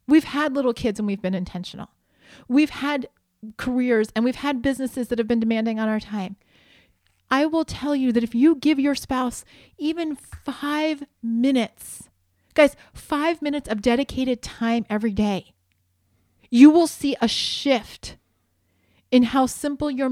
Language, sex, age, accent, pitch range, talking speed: English, female, 40-59, American, 205-265 Hz, 155 wpm